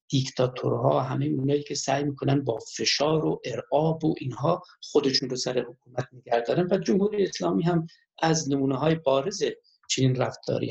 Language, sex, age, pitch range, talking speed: Persian, male, 50-69, 135-185 Hz, 155 wpm